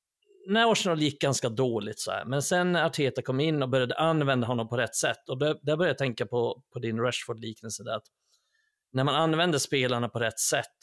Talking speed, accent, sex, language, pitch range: 205 wpm, native, male, Swedish, 120-140 Hz